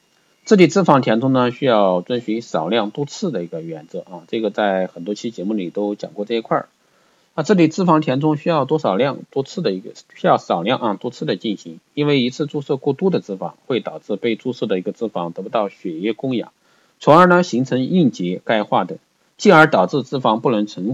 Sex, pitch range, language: male, 105-155 Hz, Chinese